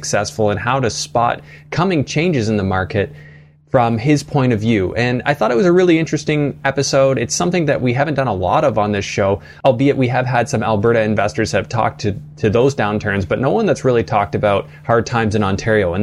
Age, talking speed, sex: 20-39, 230 wpm, male